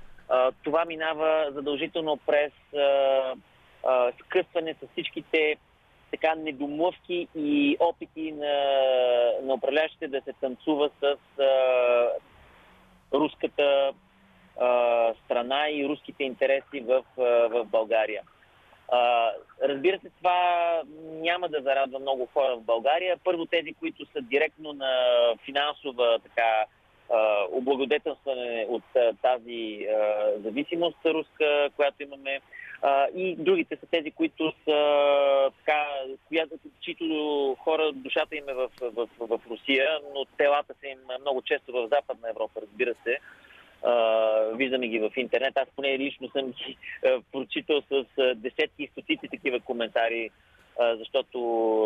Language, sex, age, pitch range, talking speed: Bulgarian, male, 30-49, 125-155 Hz, 120 wpm